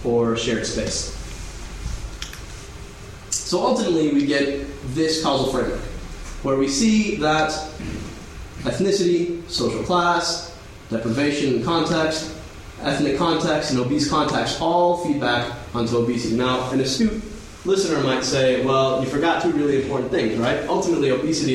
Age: 20-39